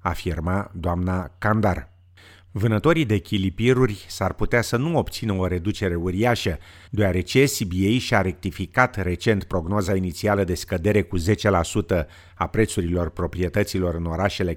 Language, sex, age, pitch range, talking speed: Romanian, male, 50-69, 90-115 Hz, 125 wpm